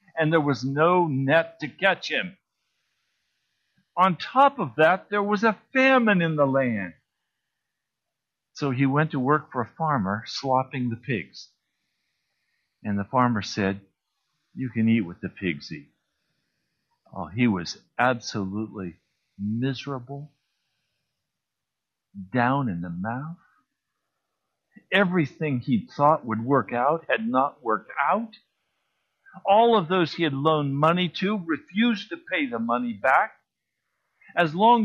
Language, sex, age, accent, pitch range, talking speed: English, male, 50-69, American, 130-205 Hz, 130 wpm